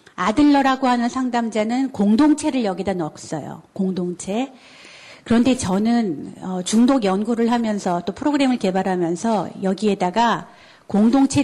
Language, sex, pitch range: Korean, female, 190-255 Hz